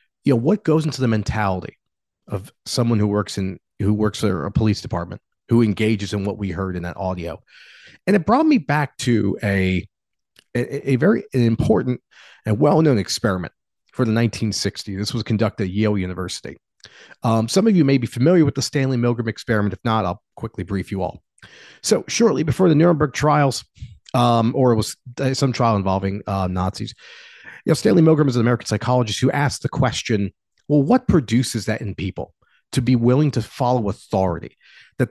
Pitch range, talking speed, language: 100-135 Hz, 190 wpm, English